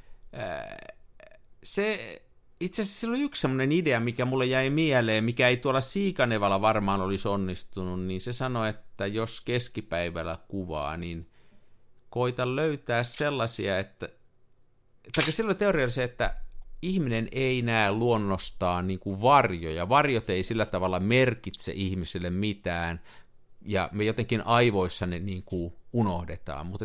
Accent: native